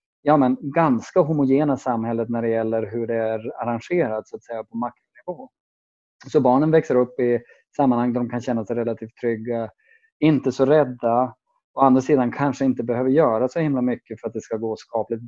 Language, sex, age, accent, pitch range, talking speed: Swedish, male, 20-39, Norwegian, 115-135 Hz, 195 wpm